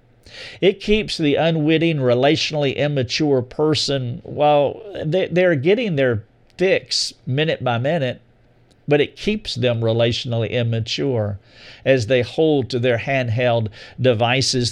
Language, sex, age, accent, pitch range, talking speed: English, male, 50-69, American, 120-150 Hz, 115 wpm